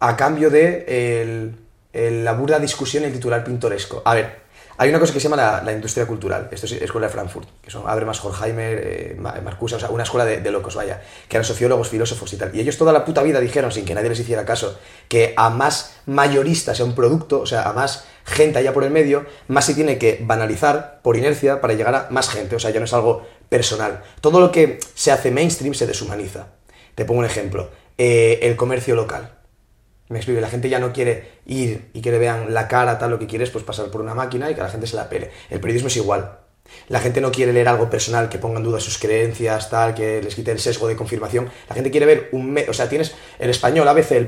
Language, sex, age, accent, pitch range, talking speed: Spanish, male, 30-49, Spanish, 110-135 Hz, 245 wpm